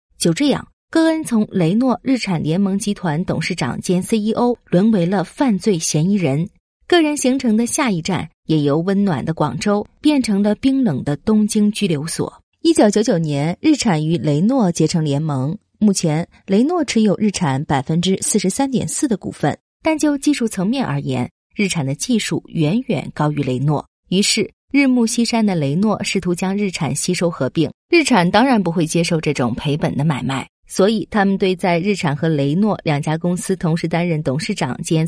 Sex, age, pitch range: female, 30-49, 155-215 Hz